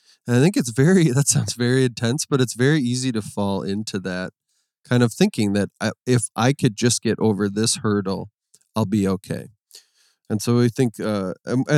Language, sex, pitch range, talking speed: English, male, 105-130 Hz, 195 wpm